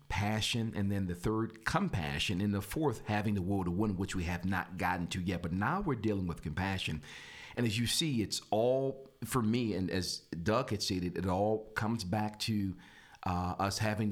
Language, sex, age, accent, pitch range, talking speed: English, male, 40-59, American, 100-140 Hz, 205 wpm